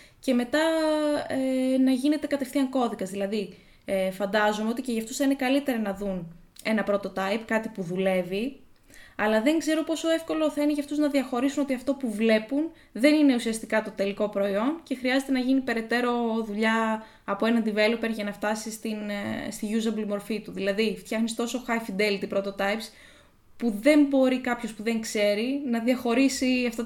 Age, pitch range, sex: 20-39, 200-260 Hz, female